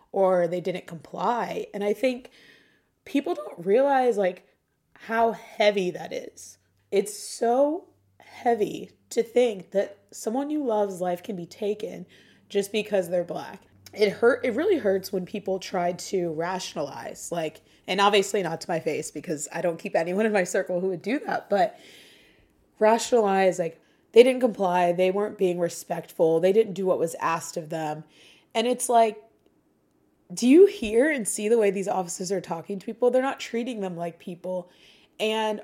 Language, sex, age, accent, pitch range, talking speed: English, female, 20-39, American, 175-225 Hz, 170 wpm